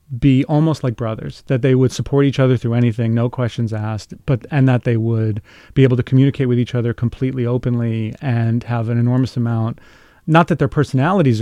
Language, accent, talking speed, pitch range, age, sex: English, American, 200 wpm, 120-140 Hz, 30-49, male